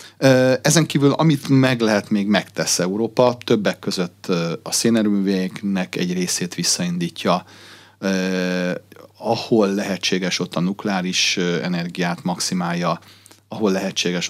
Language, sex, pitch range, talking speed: Hungarian, male, 90-115 Hz, 100 wpm